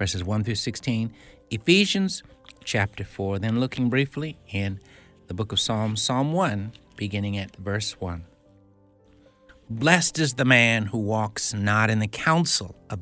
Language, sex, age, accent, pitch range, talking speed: English, male, 60-79, American, 105-150 Hz, 150 wpm